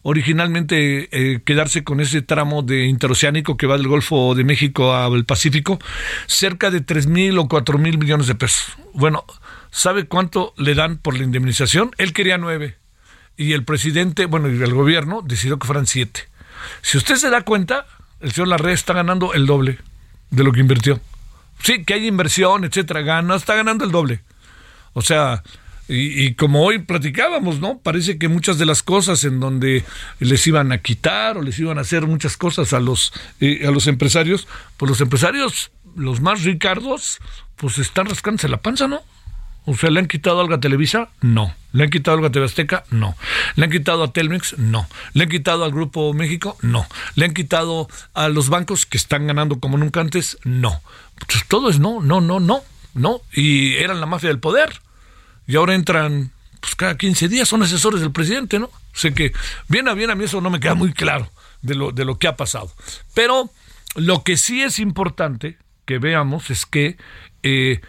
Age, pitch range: 50-69, 135-180 Hz